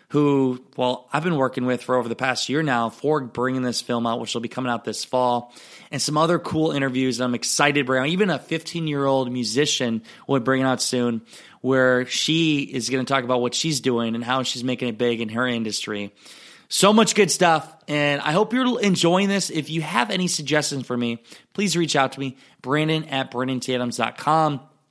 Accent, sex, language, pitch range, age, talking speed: American, male, English, 125-150 Hz, 20-39, 210 wpm